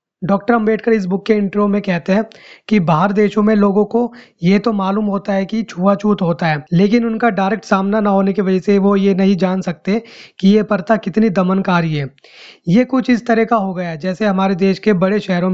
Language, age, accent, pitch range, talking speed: Hindi, 20-39, native, 185-215 Hz, 220 wpm